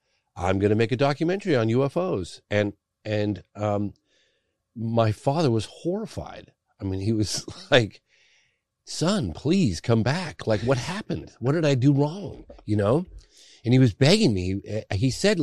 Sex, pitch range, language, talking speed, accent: male, 95-135 Hz, English, 160 wpm, American